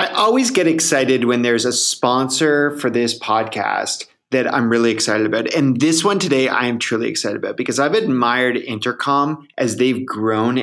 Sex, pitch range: male, 115-145 Hz